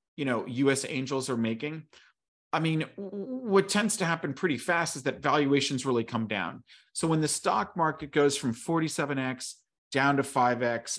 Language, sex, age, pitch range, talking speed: English, male, 40-59, 125-155 Hz, 175 wpm